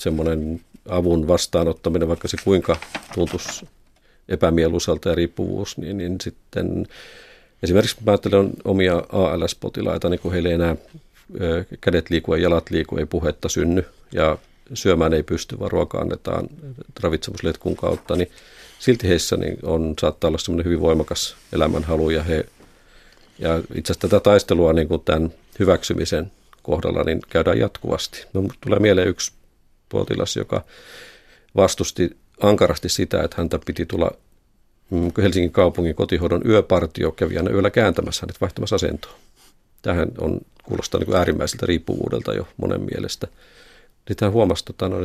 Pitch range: 85-100 Hz